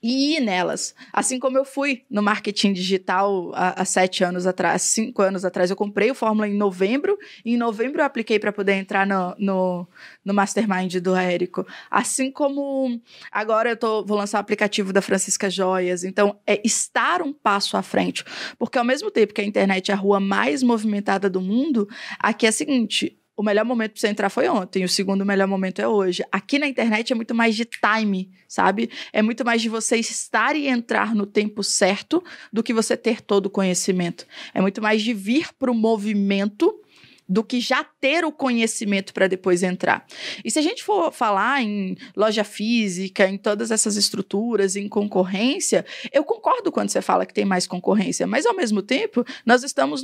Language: Portuguese